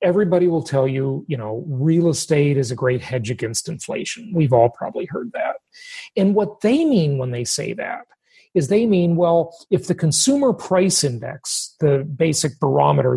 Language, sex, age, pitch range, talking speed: English, male, 40-59, 135-185 Hz, 180 wpm